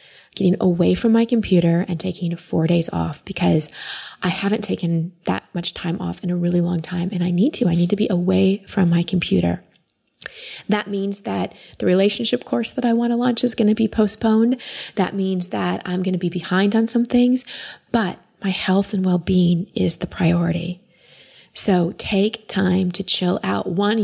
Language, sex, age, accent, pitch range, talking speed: English, female, 20-39, American, 170-195 Hz, 190 wpm